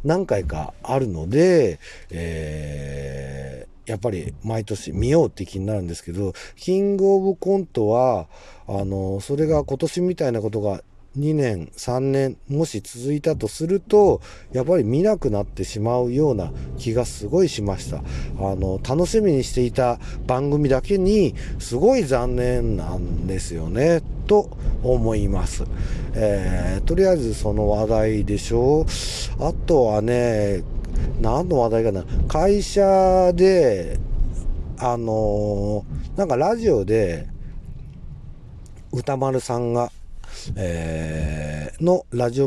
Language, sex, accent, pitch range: Japanese, male, native, 95-145 Hz